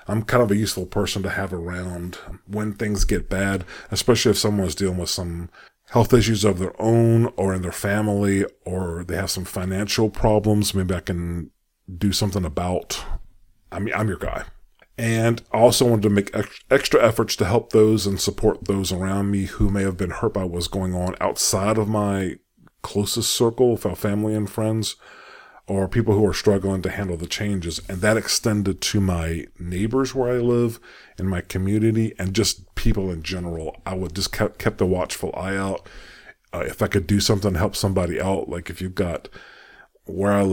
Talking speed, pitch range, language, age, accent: 190 wpm, 95-105 Hz, English, 40-59, American